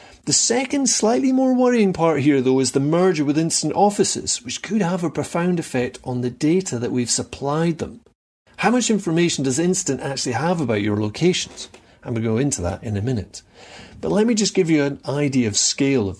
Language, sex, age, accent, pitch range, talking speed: English, male, 40-59, British, 125-175 Hz, 210 wpm